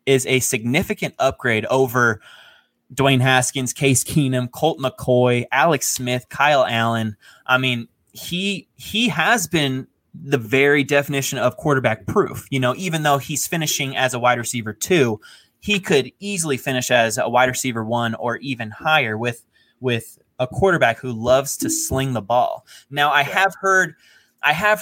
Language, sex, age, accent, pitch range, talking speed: English, male, 20-39, American, 120-145 Hz, 160 wpm